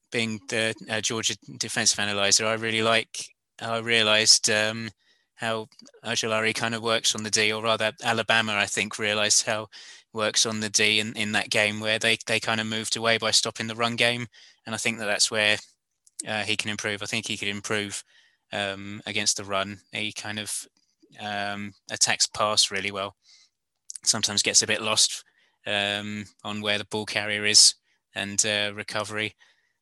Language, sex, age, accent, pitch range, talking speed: English, male, 20-39, British, 105-110 Hz, 180 wpm